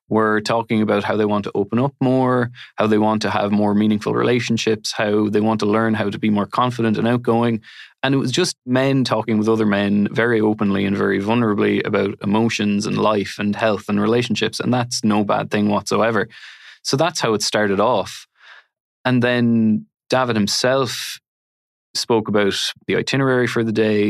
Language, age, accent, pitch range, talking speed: English, 20-39, Irish, 100-115 Hz, 185 wpm